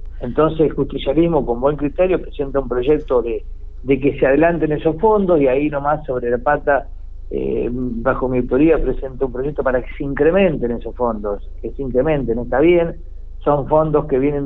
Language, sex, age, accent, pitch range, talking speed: Spanish, male, 50-69, Argentinian, 120-150 Hz, 180 wpm